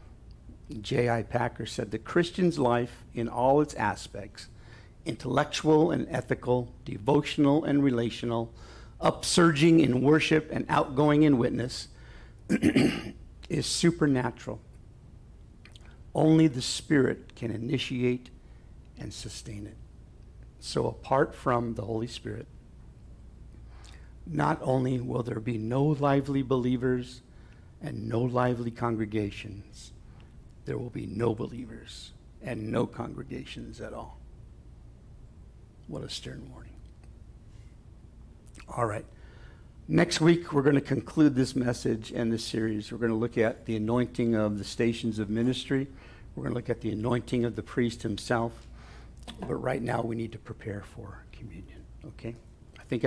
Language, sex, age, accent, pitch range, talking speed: English, male, 60-79, American, 115-135 Hz, 130 wpm